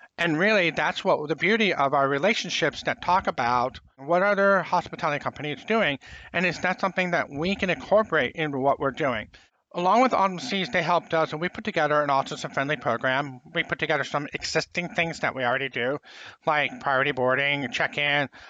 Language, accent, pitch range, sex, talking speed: English, American, 145-180 Hz, male, 190 wpm